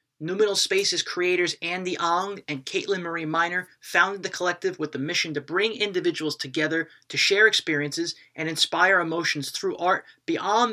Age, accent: 30-49, American